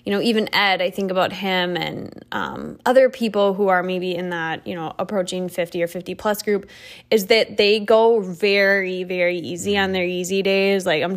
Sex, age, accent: female, 10-29, American